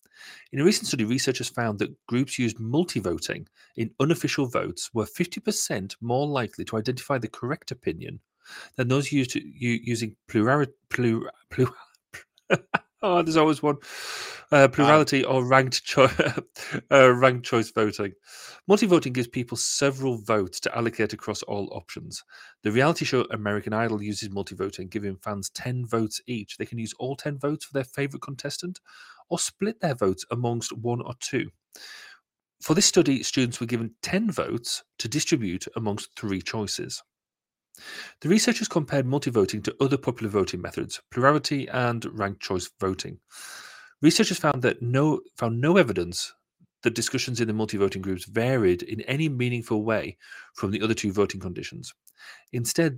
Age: 40-59